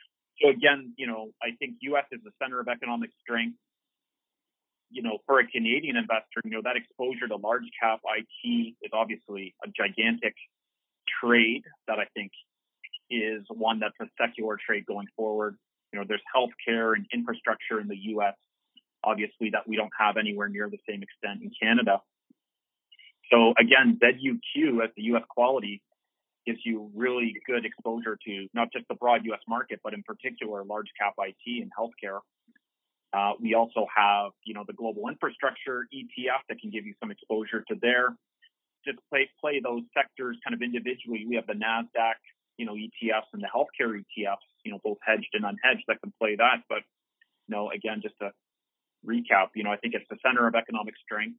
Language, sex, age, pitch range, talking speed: English, male, 30-49, 110-135 Hz, 180 wpm